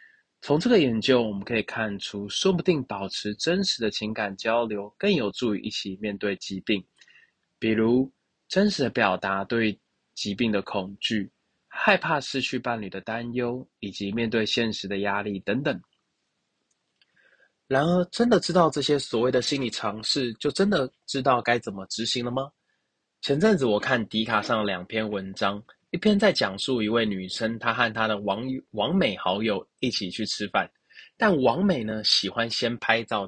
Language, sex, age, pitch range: Chinese, male, 20-39, 100-130 Hz